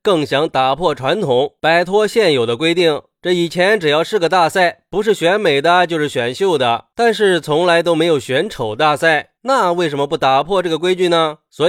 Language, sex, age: Chinese, male, 20-39